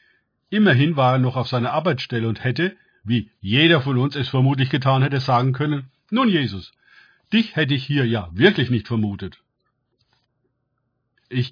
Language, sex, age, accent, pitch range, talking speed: German, male, 50-69, German, 120-160 Hz, 155 wpm